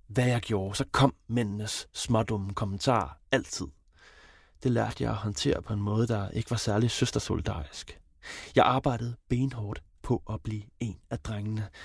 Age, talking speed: 30-49, 155 wpm